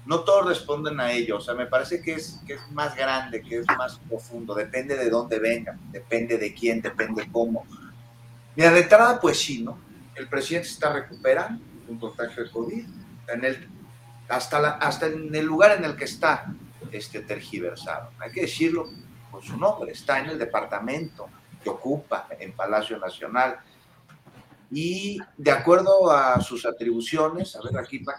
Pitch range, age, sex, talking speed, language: 120-170 Hz, 40-59, male, 175 wpm, Spanish